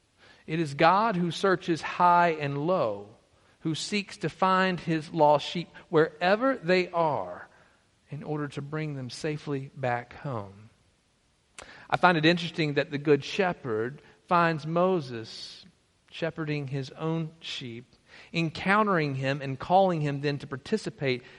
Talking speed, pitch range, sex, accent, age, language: 135 wpm, 135-170 Hz, male, American, 50-69, English